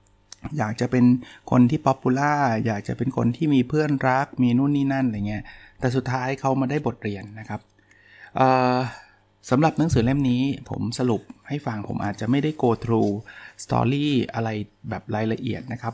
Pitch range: 105-130 Hz